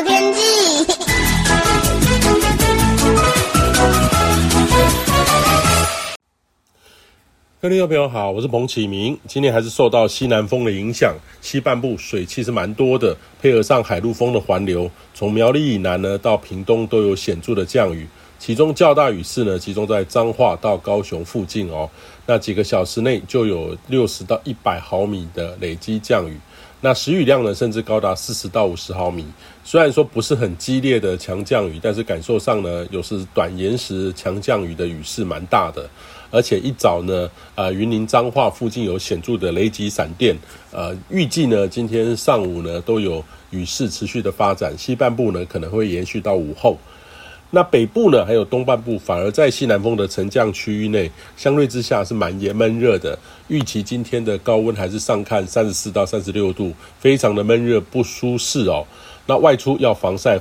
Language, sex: Chinese, male